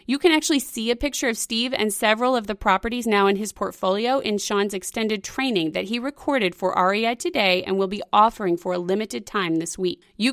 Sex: female